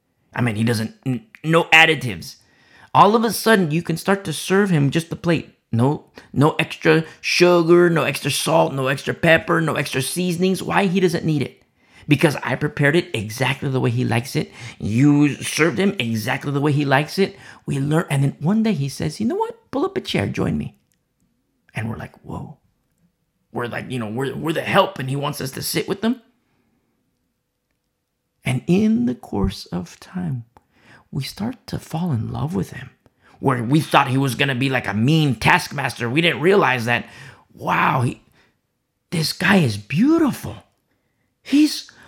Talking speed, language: 185 wpm, English